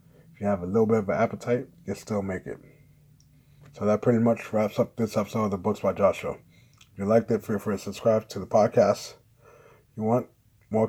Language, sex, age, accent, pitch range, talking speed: English, male, 20-39, American, 105-125 Hz, 225 wpm